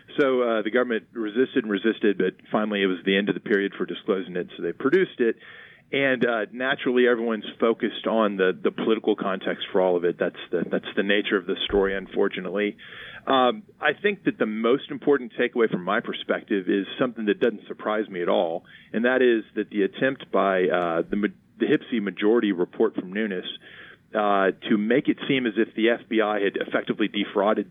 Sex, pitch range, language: male, 100-120 Hz, English